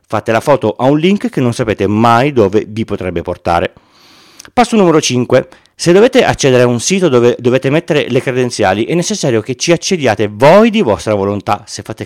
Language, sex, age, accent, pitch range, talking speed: Italian, male, 40-59, native, 110-160 Hz, 195 wpm